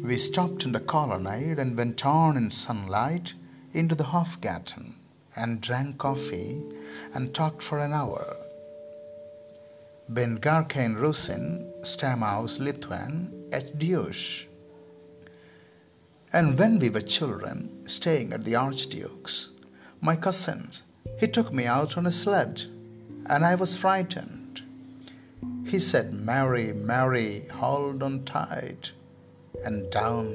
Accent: Indian